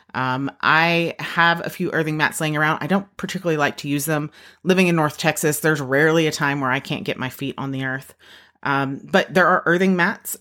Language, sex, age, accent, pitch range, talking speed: English, female, 30-49, American, 145-195 Hz, 225 wpm